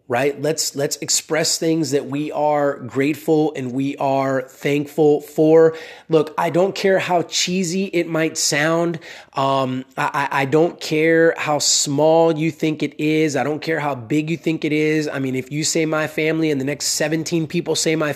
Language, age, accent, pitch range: English, 20-39, American, 145-165 Hz